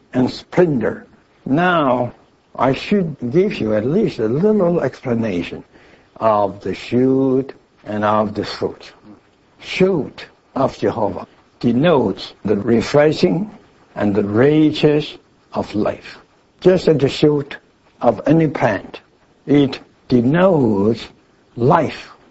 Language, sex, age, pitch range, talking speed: English, male, 60-79, 120-155 Hz, 110 wpm